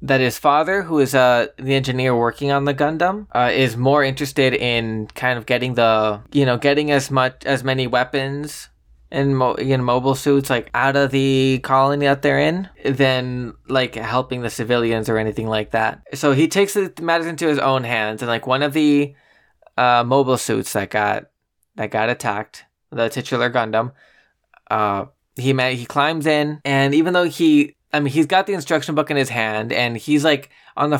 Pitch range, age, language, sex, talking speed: 120-145 Hz, 20-39, English, male, 200 wpm